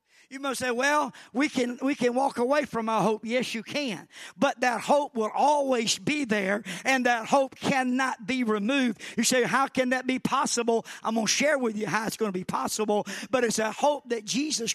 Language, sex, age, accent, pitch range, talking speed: English, male, 50-69, American, 220-270 Hz, 220 wpm